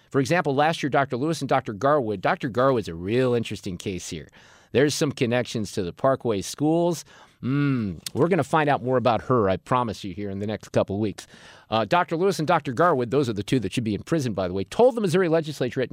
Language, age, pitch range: English, 50-69, 125-170 Hz